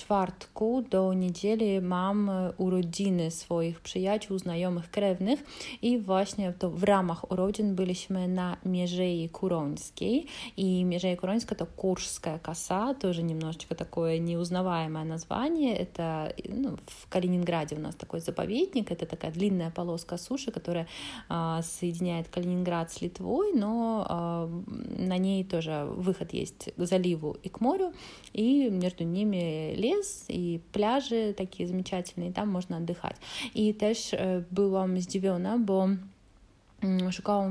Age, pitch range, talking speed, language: 30-49, 175-205 Hz, 120 wpm, Polish